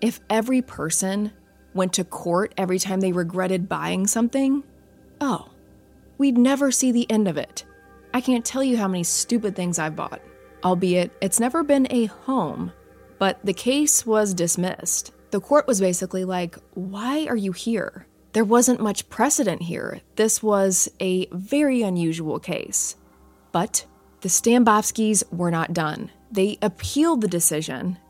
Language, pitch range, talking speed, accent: English, 165-230 Hz, 150 wpm, American